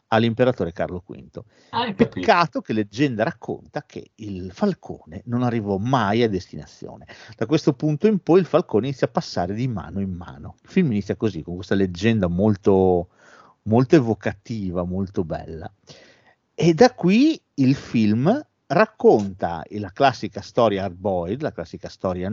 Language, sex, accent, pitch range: Italian, male, native, 95-130 Hz